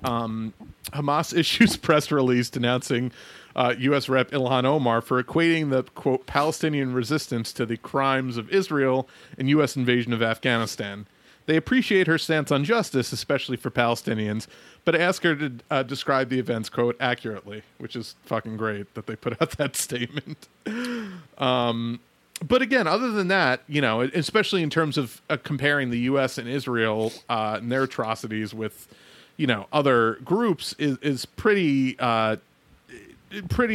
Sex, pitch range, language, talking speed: male, 115-145 Hz, English, 155 wpm